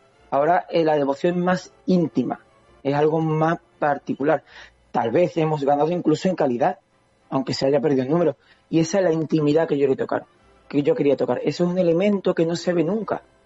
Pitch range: 135-160 Hz